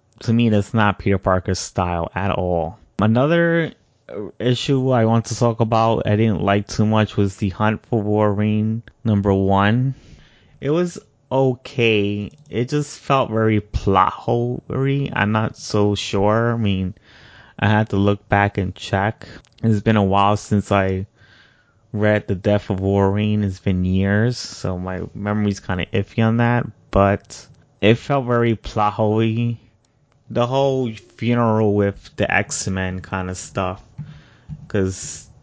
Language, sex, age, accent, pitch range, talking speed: English, male, 20-39, American, 100-120 Hz, 145 wpm